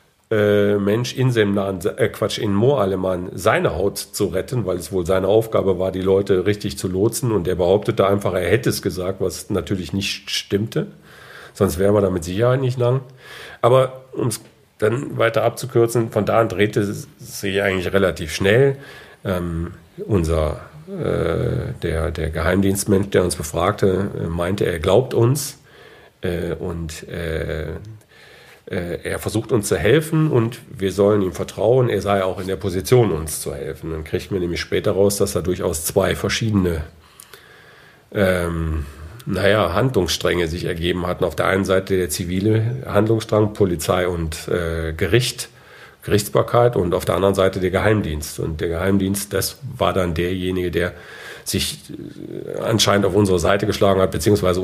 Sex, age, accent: male, 50-69, German